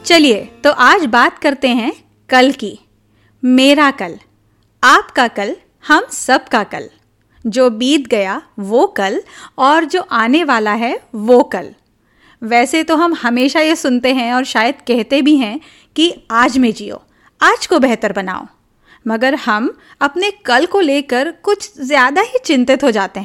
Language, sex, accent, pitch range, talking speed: Hindi, female, native, 245-310 Hz, 155 wpm